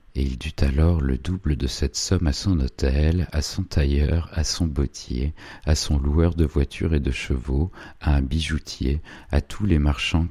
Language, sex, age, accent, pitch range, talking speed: French, male, 40-59, French, 70-90 Hz, 190 wpm